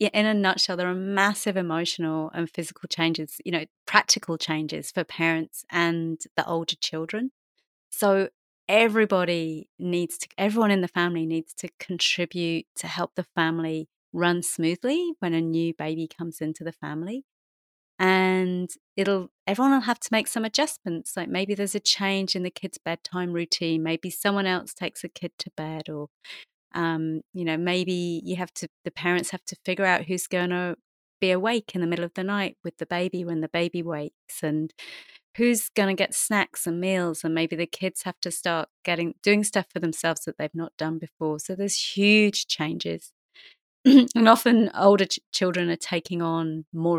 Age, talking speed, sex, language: 30-49, 180 wpm, female, English